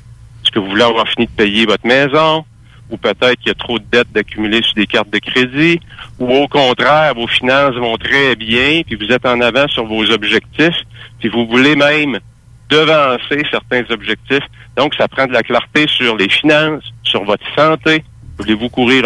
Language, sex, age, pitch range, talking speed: English, male, 60-79, 115-140 Hz, 190 wpm